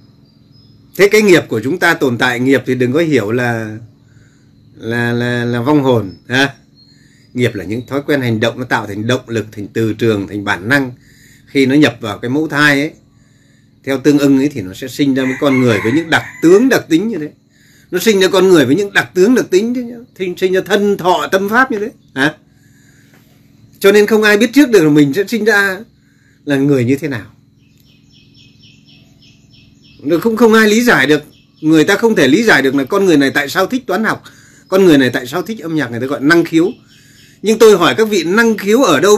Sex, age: male, 30-49